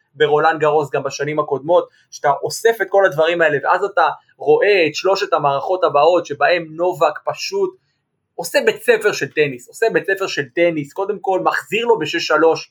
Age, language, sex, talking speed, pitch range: 20-39, Hebrew, male, 175 wpm, 155-220 Hz